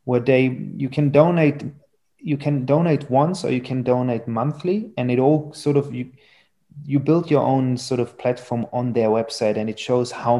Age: 30-49